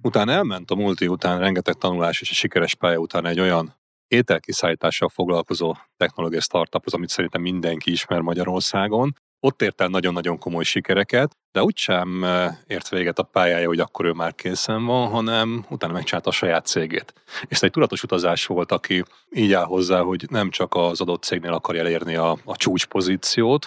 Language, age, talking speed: Hungarian, 30-49, 170 wpm